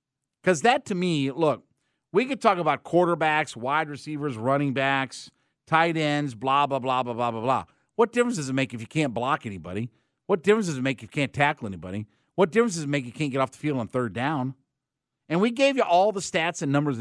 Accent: American